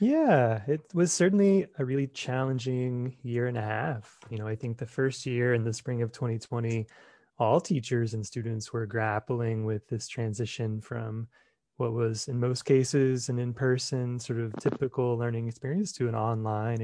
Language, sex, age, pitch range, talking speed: English, male, 20-39, 115-135 Hz, 170 wpm